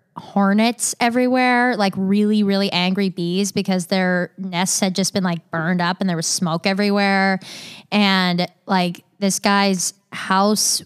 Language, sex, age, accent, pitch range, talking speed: English, female, 20-39, American, 170-200 Hz, 145 wpm